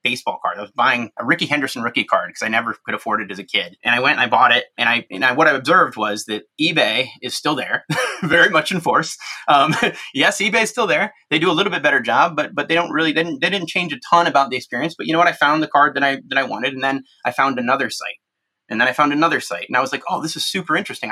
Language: English